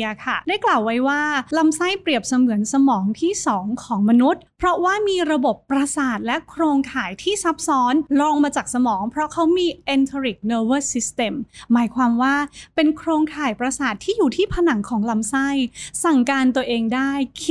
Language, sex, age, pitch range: Thai, female, 20-39, 245-315 Hz